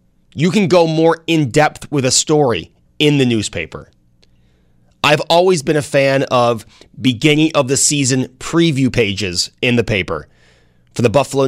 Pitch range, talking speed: 115-150 Hz, 140 wpm